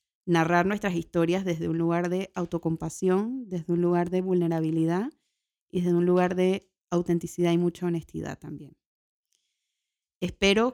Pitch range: 170-195 Hz